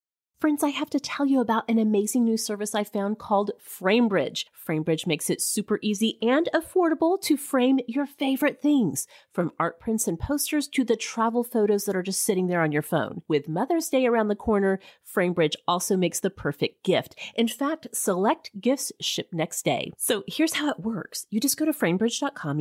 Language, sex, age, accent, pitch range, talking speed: English, female, 30-49, American, 170-250 Hz, 195 wpm